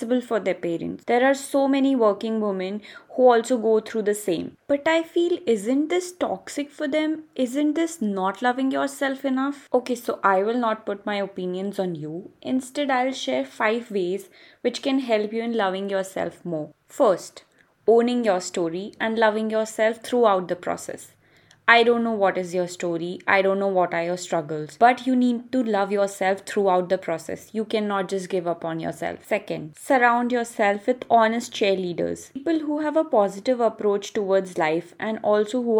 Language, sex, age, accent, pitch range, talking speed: English, female, 20-39, Indian, 195-250 Hz, 185 wpm